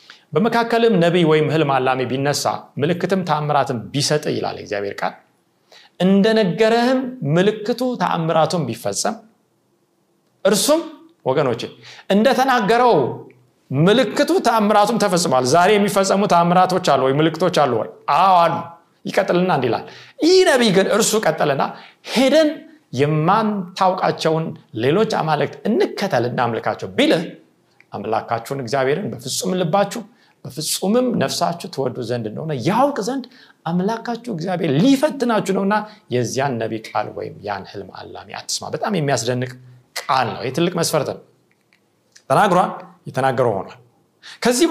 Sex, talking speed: male, 105 wpm